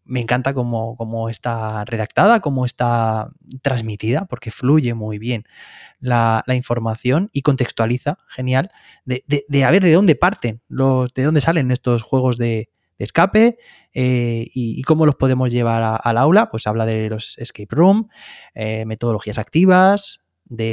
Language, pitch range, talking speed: Spanish, 115-150 Hz, 155 wpm